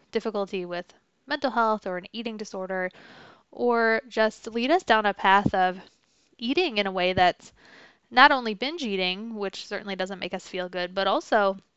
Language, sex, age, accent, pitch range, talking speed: English, female, 20-39, American, 190-235 Hz, 175 wpm